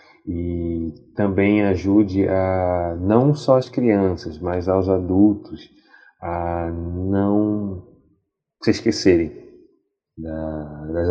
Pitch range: 90-105 Hz